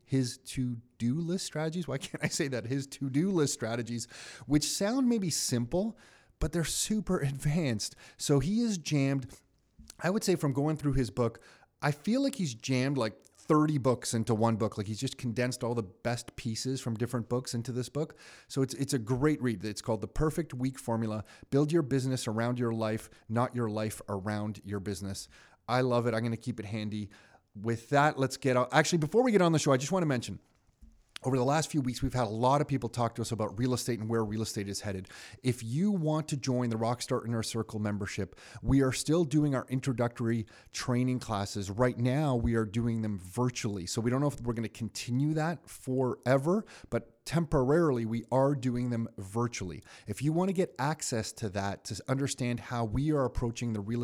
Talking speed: 210 wpm